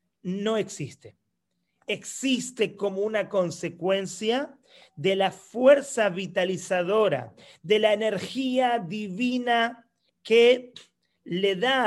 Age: 40-59